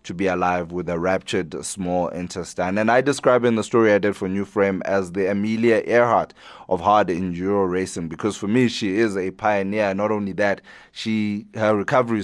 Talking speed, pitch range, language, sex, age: 195 wpm, 95-115 Hz, English, male, 30-49